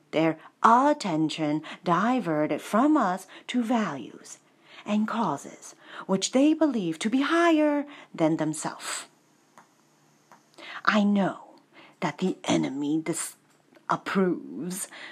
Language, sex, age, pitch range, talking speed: English, female, 40-59, 180-295 Hz, 90 wpm